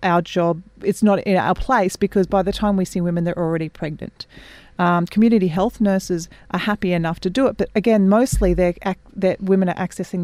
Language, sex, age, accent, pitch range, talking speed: English, female, 30-49, Australian, 165-195 Hz, 195 wpm